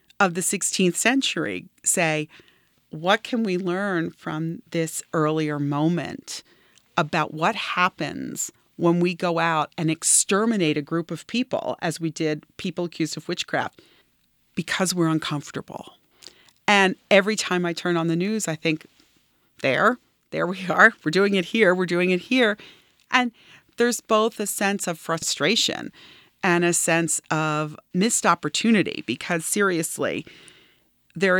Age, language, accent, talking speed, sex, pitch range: 40-59, English, American, 140 wpm, female, 160-195 Hz